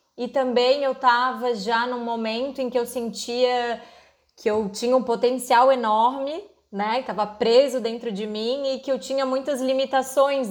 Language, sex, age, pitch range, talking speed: Vietnamese, female, 20-39, 220-265 Hz, 165 wpm